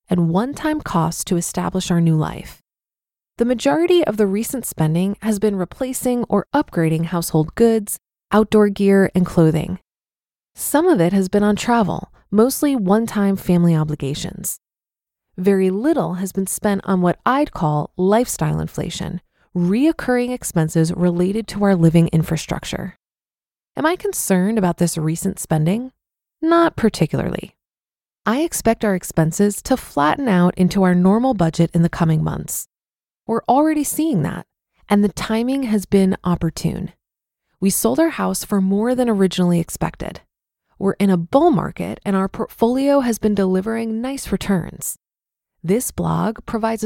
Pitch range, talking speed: 175-230 Hz, 145 wpm